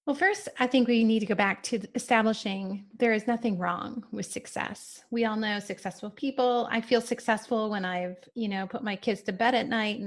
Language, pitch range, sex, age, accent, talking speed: English, 200-245 Hz, female, 30-49, American, 220 wpm